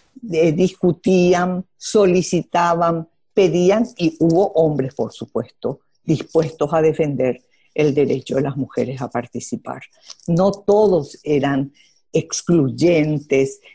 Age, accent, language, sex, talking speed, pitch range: 50-69, American, Spanish, female, 95 wpm, 145-200 Hz